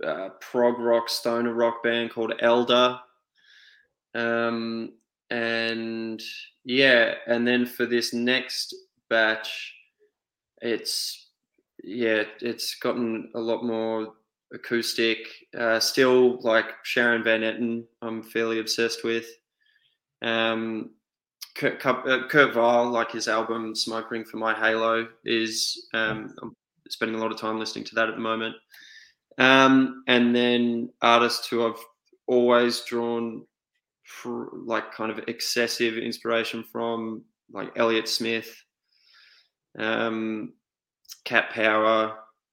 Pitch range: 115-125 Hz